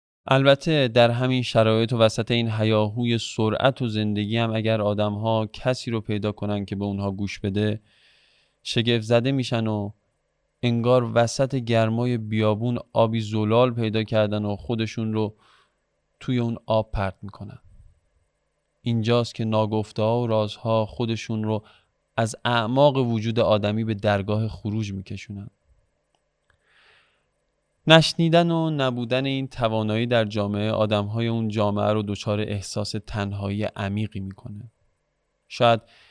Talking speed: 130 wpm